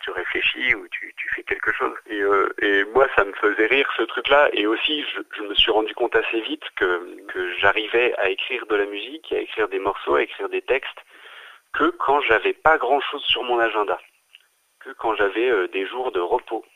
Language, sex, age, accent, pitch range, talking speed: French, male, 40-59, French, 360-420 Hz, 215 wpm